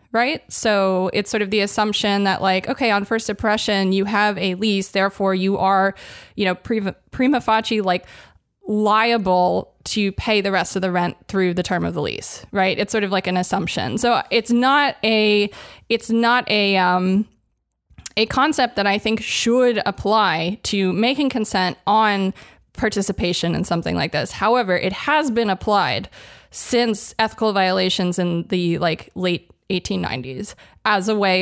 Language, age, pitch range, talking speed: English, 20-39, 185-220 Hz, 165 wpm